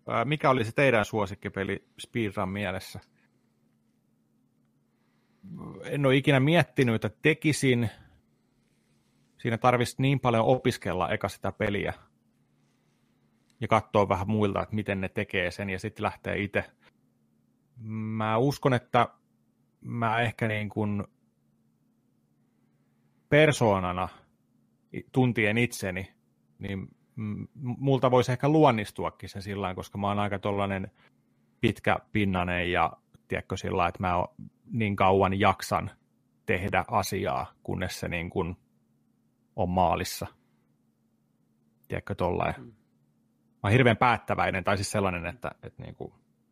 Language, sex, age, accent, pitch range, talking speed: Finnish, male, 30-49, native, 95-120 Hz, 110 wpm